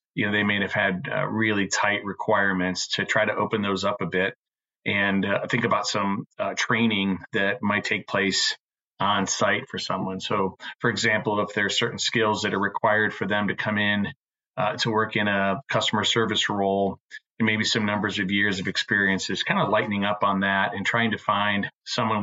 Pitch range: 95-110 Hz